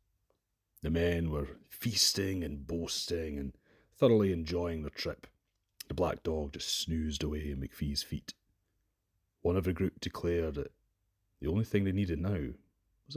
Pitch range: 75-100 Hz